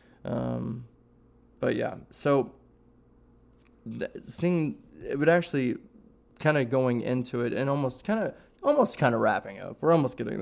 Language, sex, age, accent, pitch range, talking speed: English, male, 20-39, American, 120-145 Hz, 145 wpm